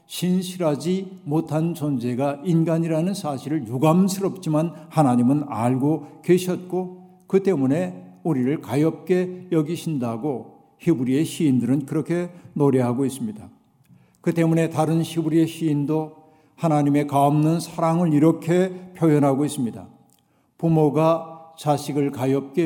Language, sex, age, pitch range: Korean, male, 60-79, 145-175 Hz